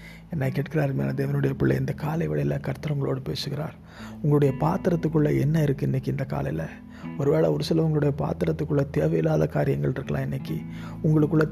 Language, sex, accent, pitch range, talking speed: Tamil, male, native, 125-160 Hz, 135 wpm